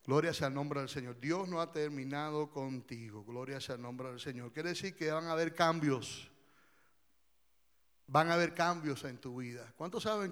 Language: Spanish